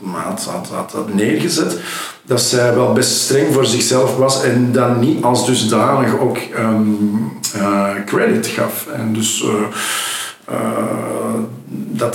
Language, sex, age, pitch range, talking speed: Dutch, male, 50-69, 110-125 Hz, 140 wpm